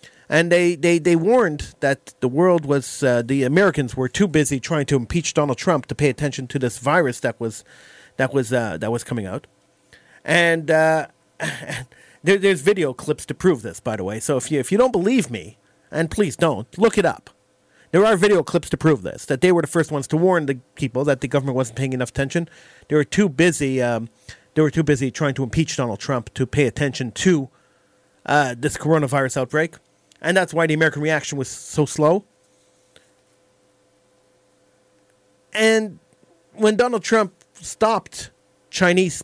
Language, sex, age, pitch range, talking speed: English, male, 40-59, 130-175 Hz, 185 wpm